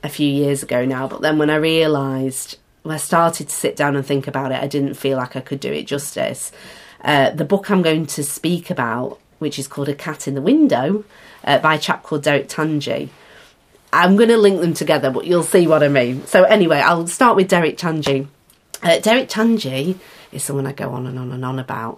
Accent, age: British, 30-49